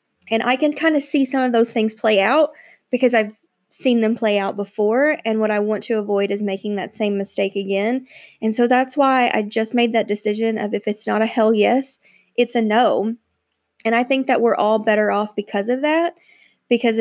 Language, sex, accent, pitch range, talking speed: English, female, American, 205-235 Hz, 220 wpm